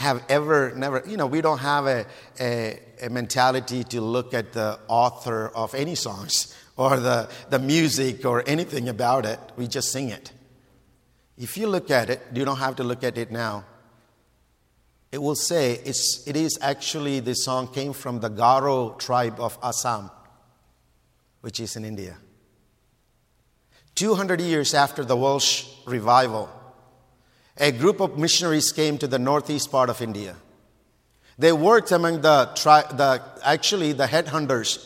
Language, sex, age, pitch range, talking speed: English, male, 50-69, 120-155 Hz, 155 wpm